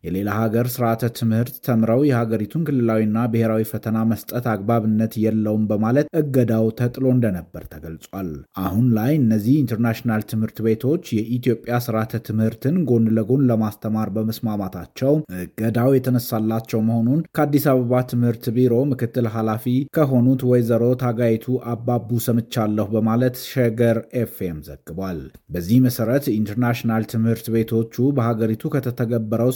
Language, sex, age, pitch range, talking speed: Amharic, male, 30-49, 110-125 Hz, 110 wpm